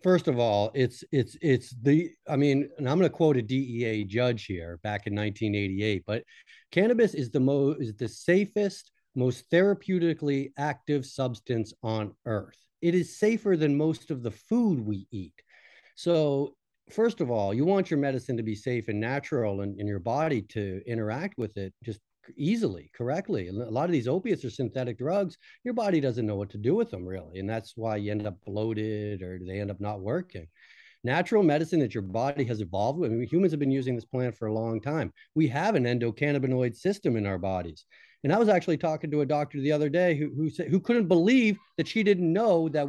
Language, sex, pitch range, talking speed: English, male, 110-165 Hz, 210 wpm